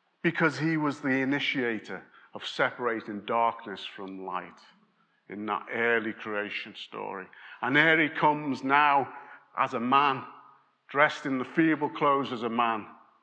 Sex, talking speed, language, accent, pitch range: male, 140 wpm, English, British, 125-155 Hz